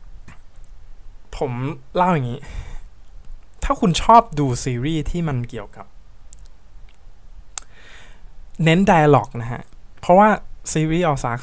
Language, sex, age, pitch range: Thai, male, 20-39, 110-160 Hz